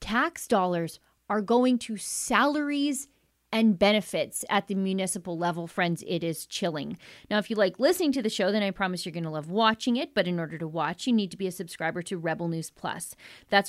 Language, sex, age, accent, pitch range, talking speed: English, female, 30-49, American, 170-220 Hz, 215 wpm